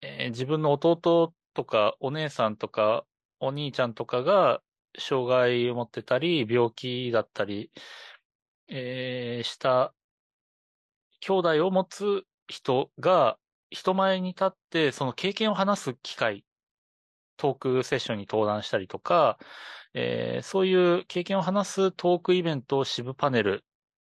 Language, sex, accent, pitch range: Japanese, male, native, 115-175 Hz